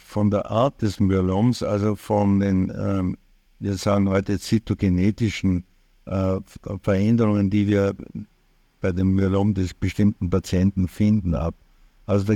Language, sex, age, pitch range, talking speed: German, male, 60-79, 95-110 Hz, 130 wpm